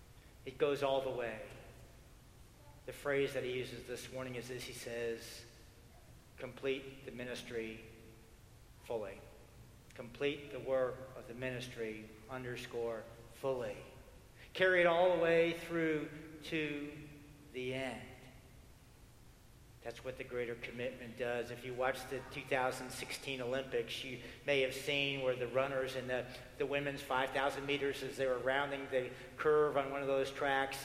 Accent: American